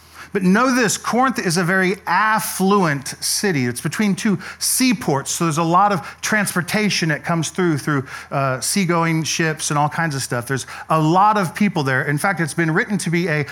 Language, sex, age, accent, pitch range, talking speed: English, male, 40-59, American, 140-195 Hz, 200 wpm